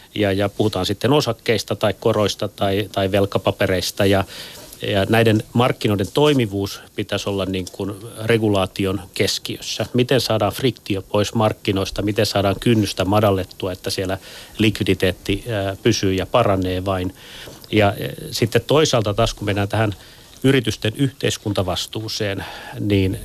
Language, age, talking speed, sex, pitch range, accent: Finnish, 30-49, 120 wpm, male, 100-115 Hz, native